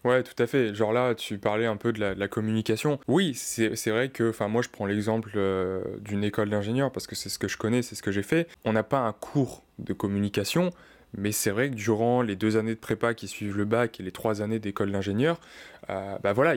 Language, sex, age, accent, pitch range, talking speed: French, male, 20-39, French, 100-120 Hz, 260 wpm